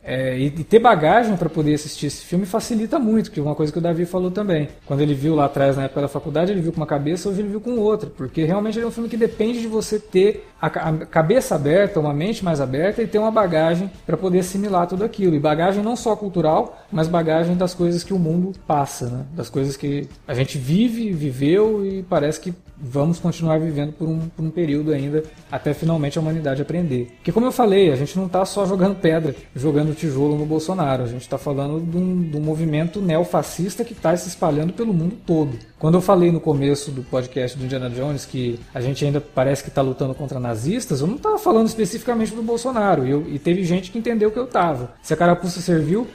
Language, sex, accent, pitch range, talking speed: Portuguese, male, Brazilian, 145-200 Hz, 230 wpm